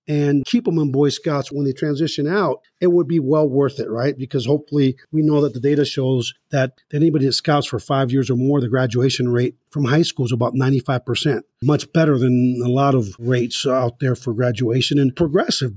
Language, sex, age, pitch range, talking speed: English, male, 50-69, 130-165 Hz, 215 wpm